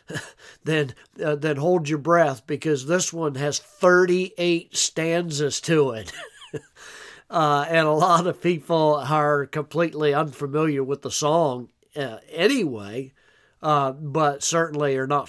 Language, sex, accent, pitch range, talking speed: English, male, American, 140-170 Hz, 130 wpm